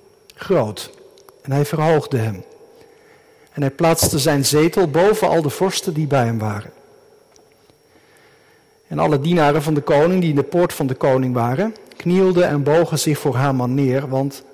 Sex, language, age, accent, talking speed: male, Dutch, 50-69, Dutch, 170 wpm